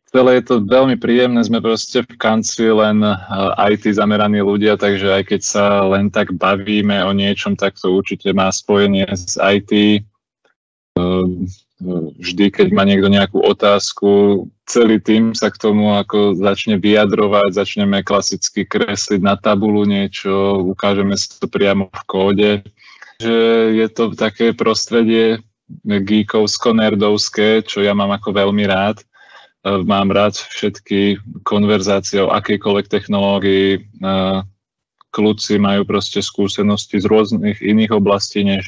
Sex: male